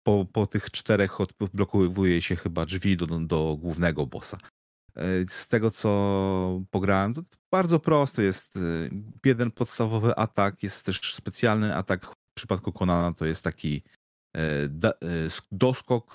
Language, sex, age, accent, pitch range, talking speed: Polish, male, 30-49, native, 85-105 Hz, 125 wpm